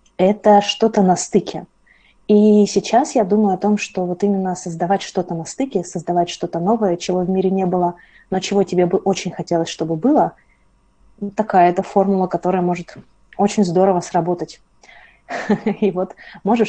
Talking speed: 160 wpm